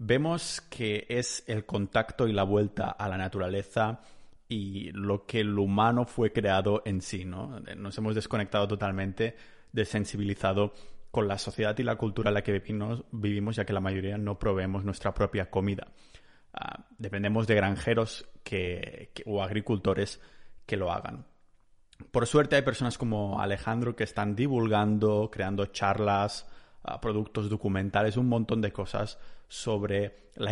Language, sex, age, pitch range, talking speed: Spanish, male, 30-49, 100-115 Hz, 145 wpm